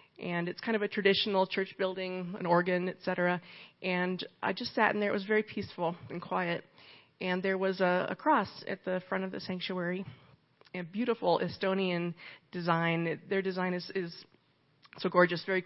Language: English